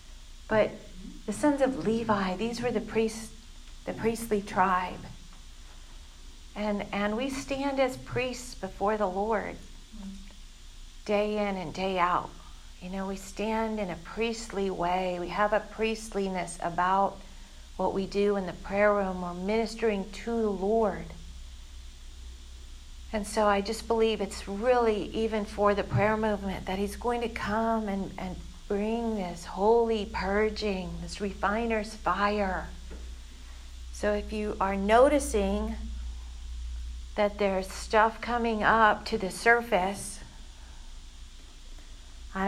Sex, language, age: female, English, 50-69